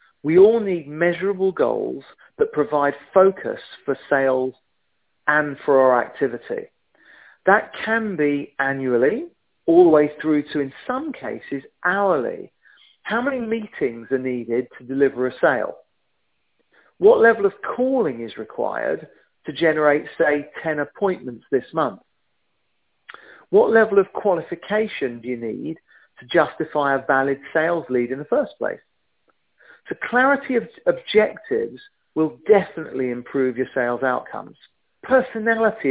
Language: English